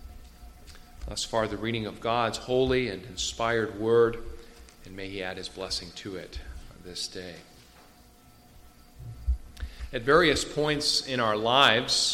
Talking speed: 130 wpm